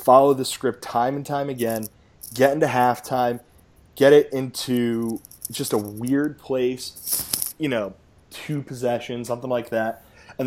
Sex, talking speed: male, 145 wpm